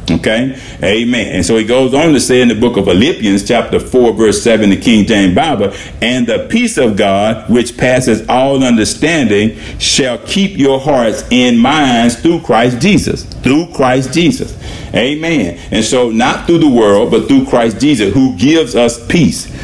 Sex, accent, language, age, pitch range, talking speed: male, American, English, 50-69, 110-130 Hz, 175 wpm